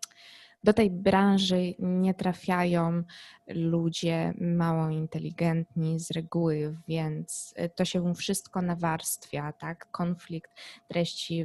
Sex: female